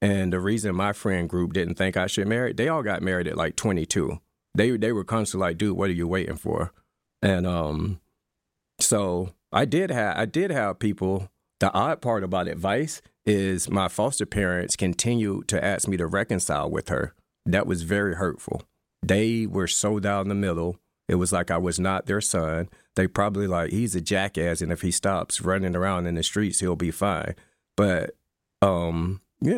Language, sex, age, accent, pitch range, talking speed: English, male, 40-59, American, 90-110 Hz, 195 wpm